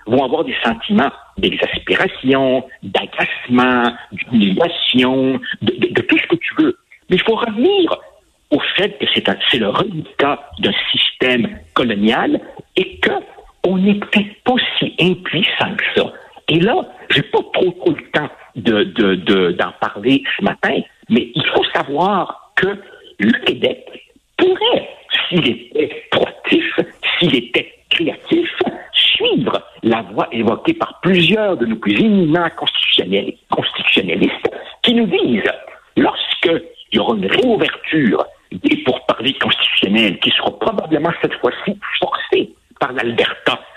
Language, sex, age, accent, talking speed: French, male, 60-79, French, 135 wpm